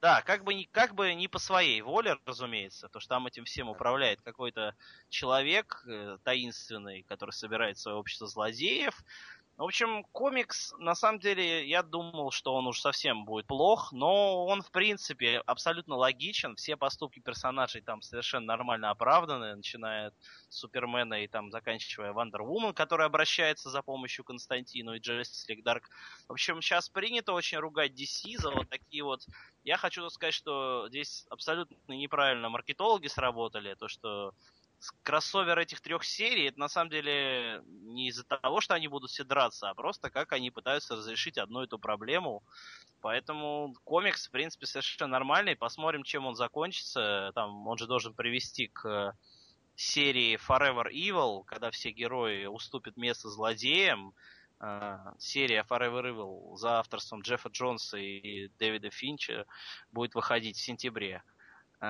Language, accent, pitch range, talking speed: Russian, native, 110-155 Hz, 150 wpm